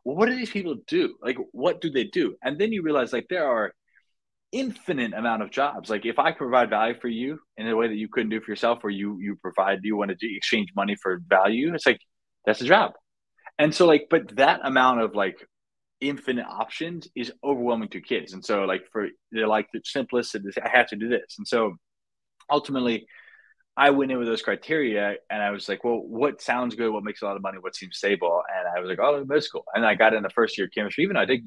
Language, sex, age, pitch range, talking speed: English, male, 20-39, 105-140 Hz, 240 wpm